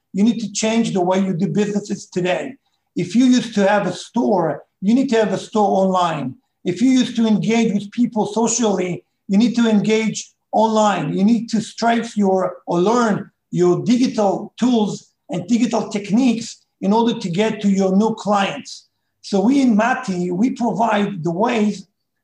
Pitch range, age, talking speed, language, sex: 190-225 Hz, 50-69, 175 wpm, English, male